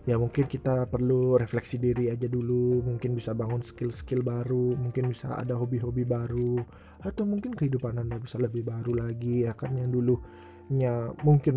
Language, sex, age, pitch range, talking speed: Indonesian, male, 20-39, 120-145 Hz, 160 wpm